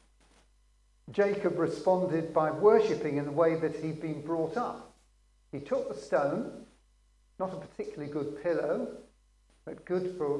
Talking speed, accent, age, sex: 140 wpm, British, 50-69, male